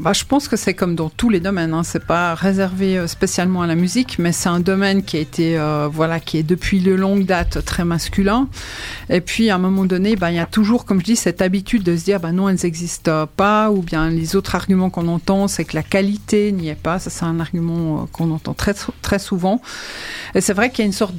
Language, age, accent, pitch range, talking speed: French, 40-59, French, 170-195 Hz, 255 wpm